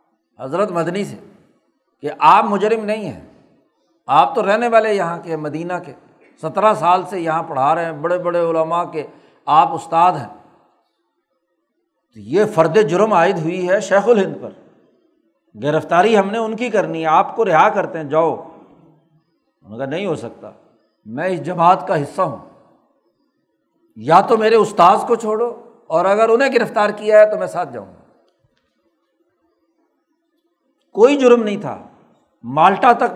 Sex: male